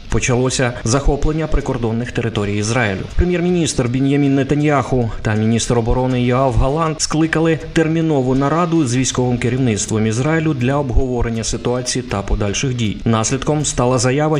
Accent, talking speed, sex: native, 120 wpm, male